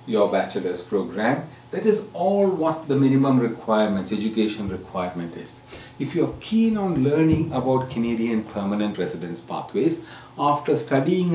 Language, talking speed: English, 135 wpm